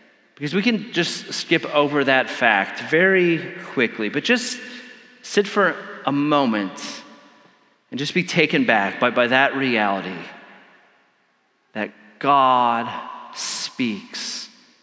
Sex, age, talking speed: male, 40-59, 115 wpm